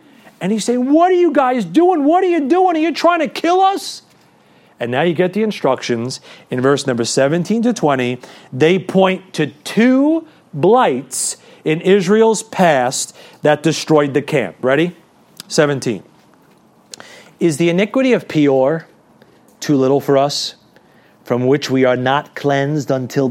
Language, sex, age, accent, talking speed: English, male, 40-59, American, 155 wpm